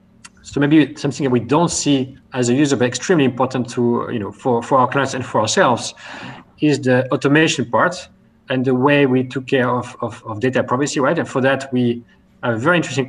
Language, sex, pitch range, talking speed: English, male, 125-150 Hz, 215 wpm